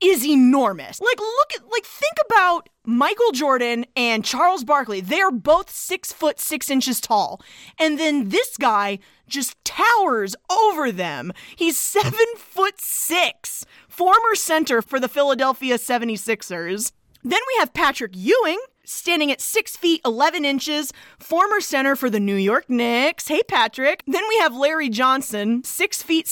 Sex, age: female, 30-49